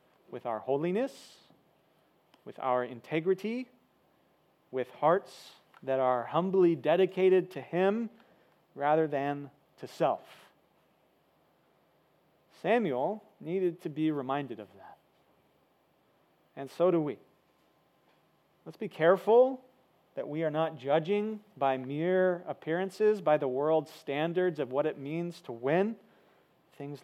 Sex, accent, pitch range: male, American, 145-180 Hz